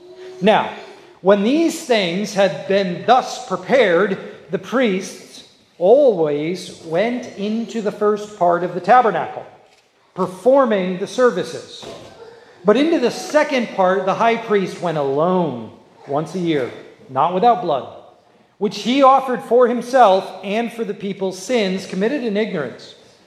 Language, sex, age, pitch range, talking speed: English, male, 40-59, 185-240 Hz, 130 wpm